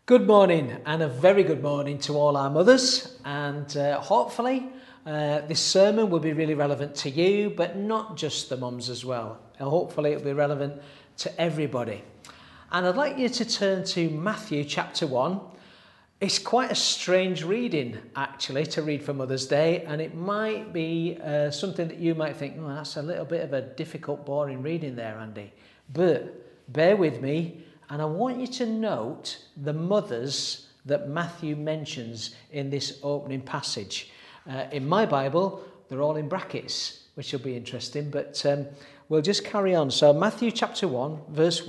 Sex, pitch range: male, 140-175 Hz